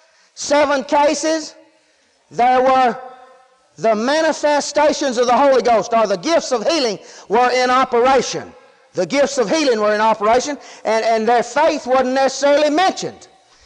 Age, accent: 40-59, American